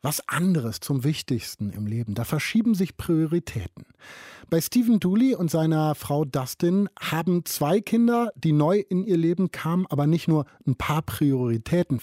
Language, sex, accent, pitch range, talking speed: German, male, German, 130-185 Hz, 160 wpm